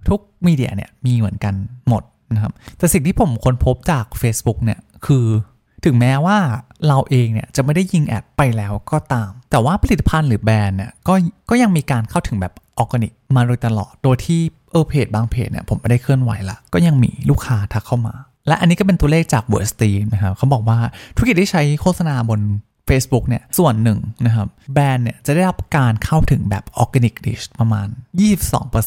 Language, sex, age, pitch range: Thai, male, 20-39, 110-150 Hz